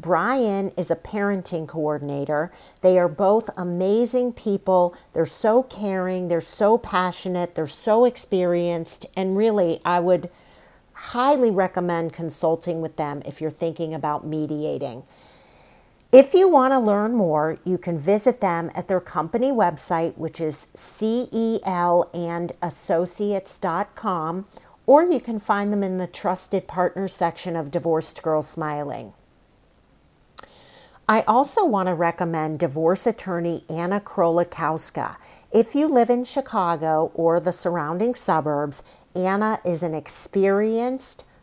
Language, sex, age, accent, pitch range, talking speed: English, female, 50-69, American, 165-210 Hz, 125 wpm